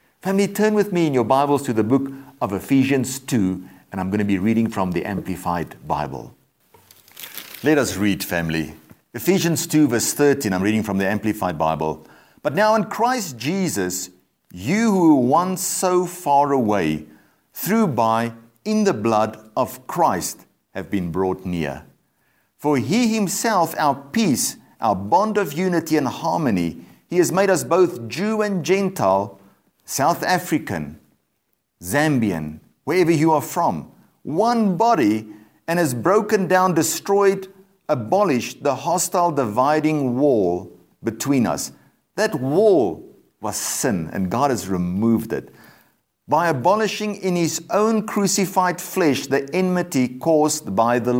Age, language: 50-69, English